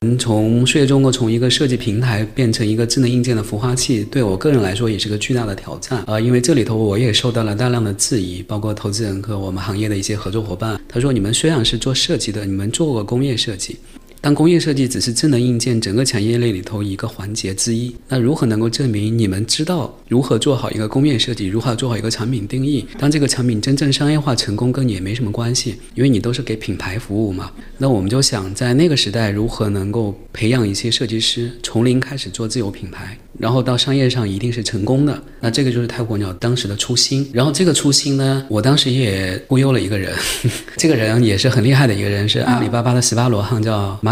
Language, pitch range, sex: Chinese, 105-130 Hz, male